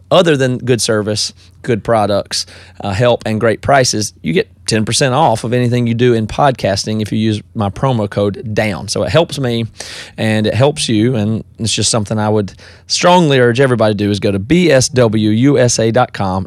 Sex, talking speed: male, 185 wpm